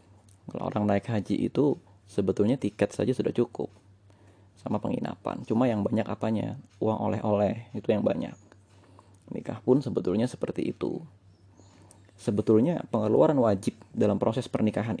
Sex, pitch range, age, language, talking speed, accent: male, 100-110 Hz, 20-39, Indonesian, 130 wpm, native